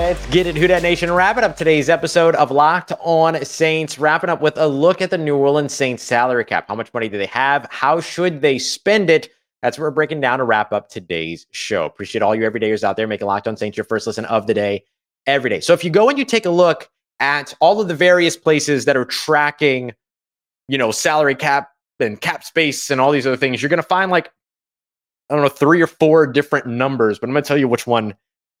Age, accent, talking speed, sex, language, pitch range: 30-49, American, 240 wpm, male, English, 110-155 Hz